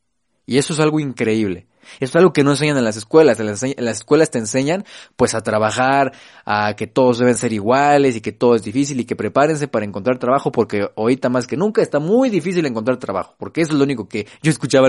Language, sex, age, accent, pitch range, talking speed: Spanish, male, 30-49, Mexican, 105-140 Hz, 235 wpm